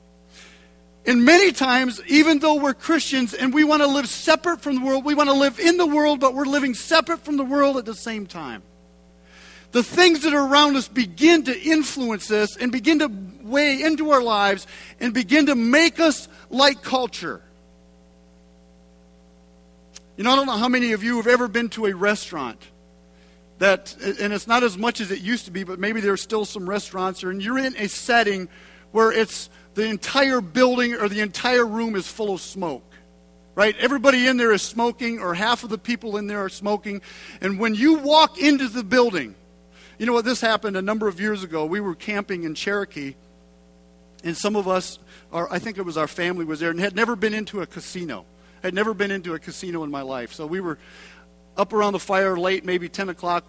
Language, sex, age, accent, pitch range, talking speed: English, male, 50-69, American, 170-255 Hz, 210 wpm